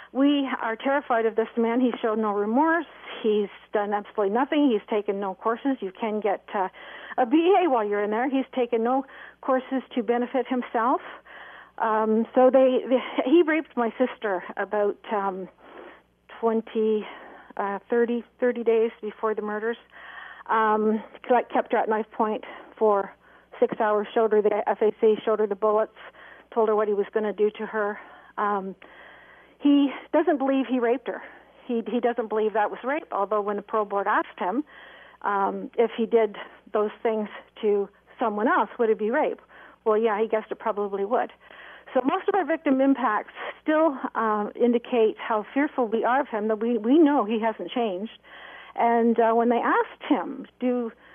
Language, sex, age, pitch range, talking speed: English, female, 50-69, 215-265 Hz, 175 wpm